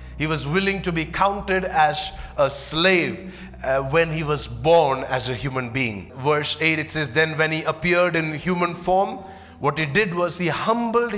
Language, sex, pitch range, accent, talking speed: English, male, 125-180 Hz, Indian, 190 wpm